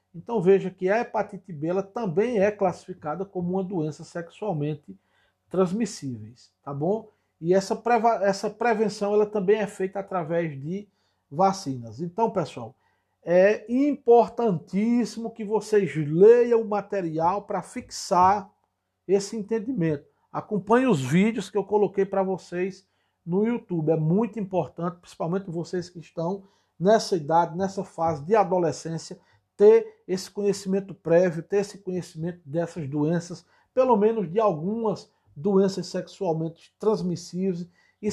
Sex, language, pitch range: male, Portuguese, 165-205 Hz